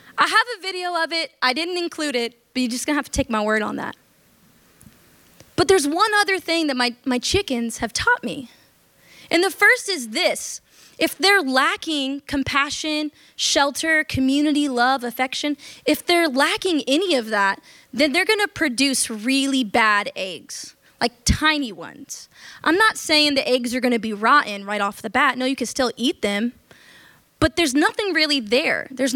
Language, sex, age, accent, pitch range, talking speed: English, female, 20-39, American, 245-310 Hz, 180 wpm